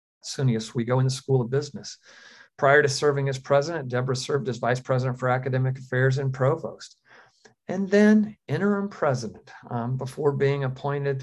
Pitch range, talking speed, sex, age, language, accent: 125-140 Hz, 160 wpm, male, 50-69, English, American